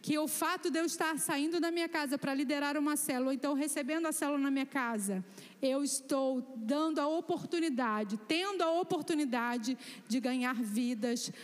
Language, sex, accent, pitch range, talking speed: Portuguese, female, Brazilian, 245-320 Hz, 175 wpm